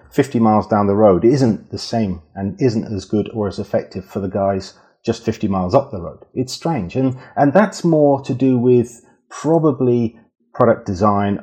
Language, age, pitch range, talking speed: English, 40-59, 95-120 Hz, 190 wpm